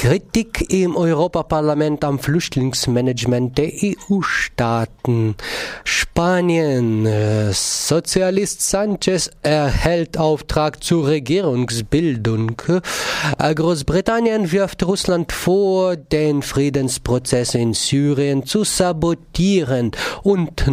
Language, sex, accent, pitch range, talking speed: German, male, German, 130-175 Hz, 70 wpm